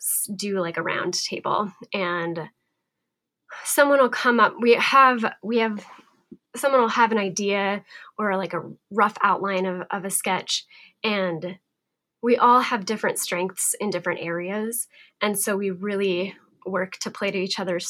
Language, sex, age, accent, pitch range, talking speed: English, female, 10-29, American, 180-225 Hz, 160 wpm